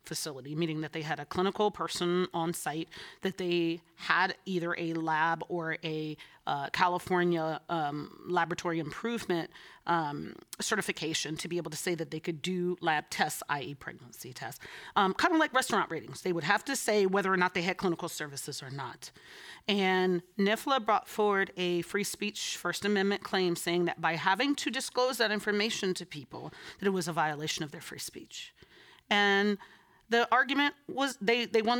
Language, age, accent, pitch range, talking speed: English, 30-49, American, 165-205 Hz, 180 wpm